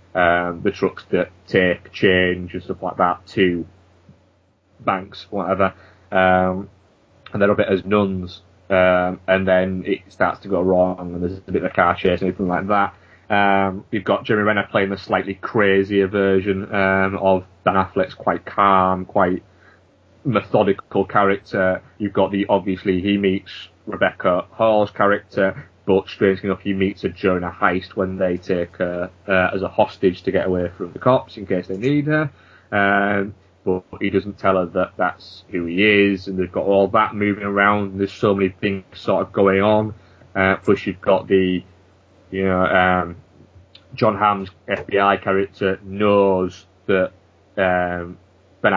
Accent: British